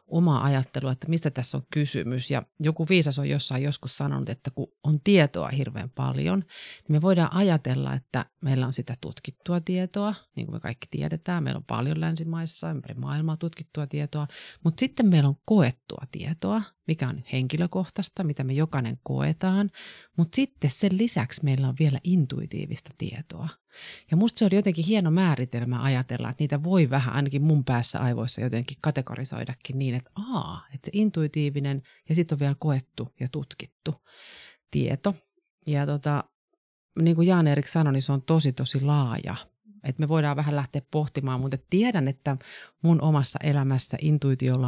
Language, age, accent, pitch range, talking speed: Finnish, 30-49, native, 130-165 Hz, 165 wpm